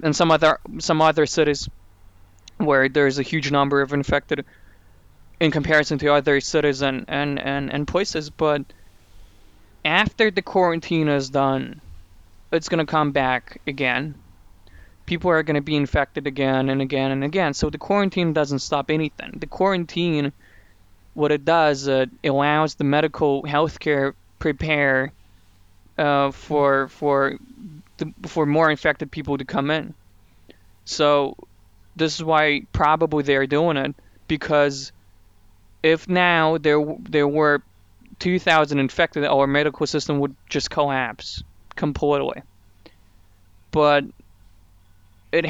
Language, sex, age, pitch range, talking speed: Ukrainian, male, 20-39, 95-155 Hz, 130 wpm